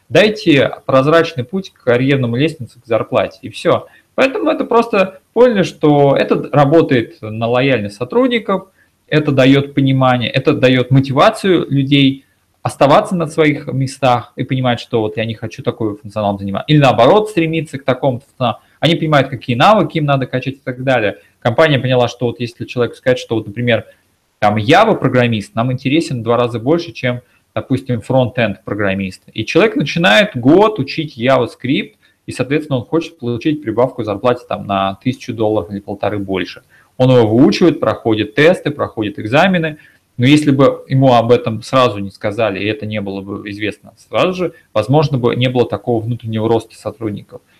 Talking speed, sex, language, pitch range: 165 wpm, male, Russian, 115-155 Hz